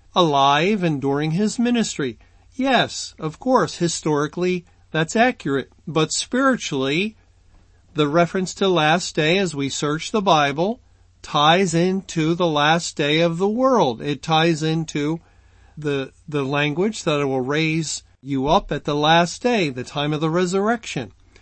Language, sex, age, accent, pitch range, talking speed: English, male, 40-59, American, 140-180 Hz, 145 wpm